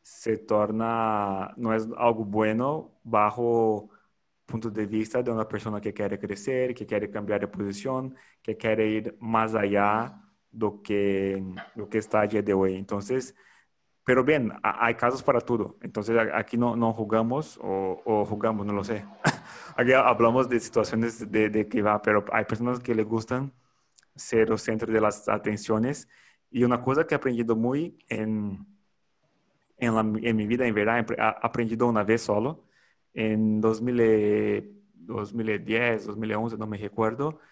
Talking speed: 165 wpm